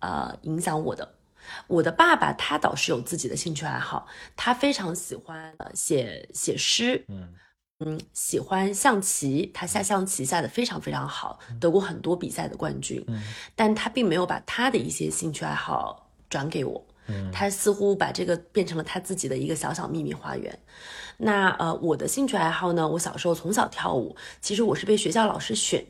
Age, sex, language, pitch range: 30-49, female, Chinese, 150-210 Hz